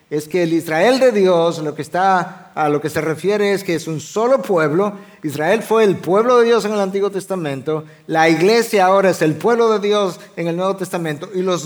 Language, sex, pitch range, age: Spanish, male, 140-180 Hz, 50-69